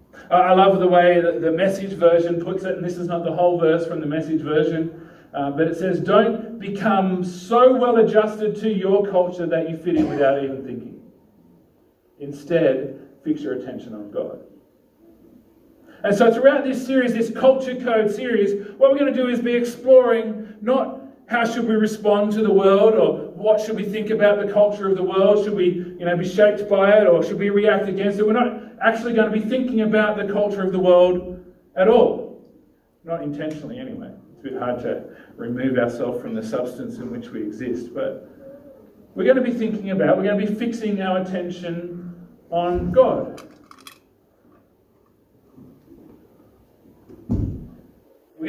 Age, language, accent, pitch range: 40-59, English, Australian, 175-225 Hz